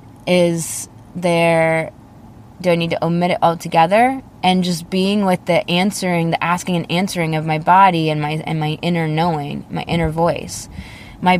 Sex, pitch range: female, 155-175 Hz